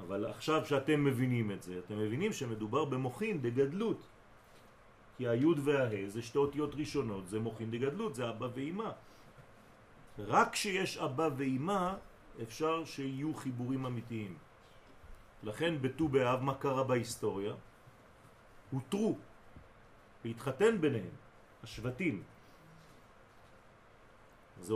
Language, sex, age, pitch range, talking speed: French, male, 40-59, 115-150 Hz, 105 wpm